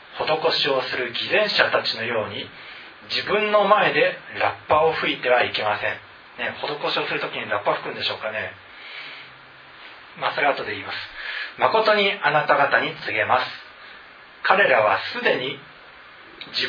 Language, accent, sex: Japanese, native, male